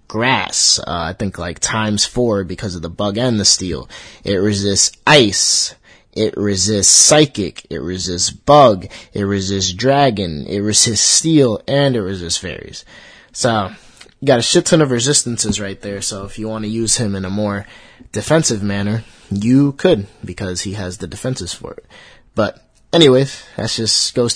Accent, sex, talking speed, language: American, male, 170 wpm, English